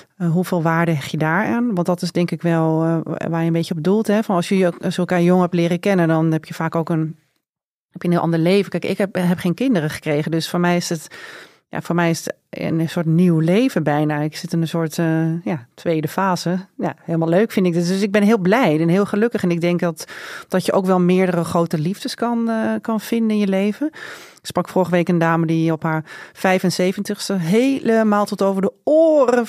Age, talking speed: 30-49, 245 wpm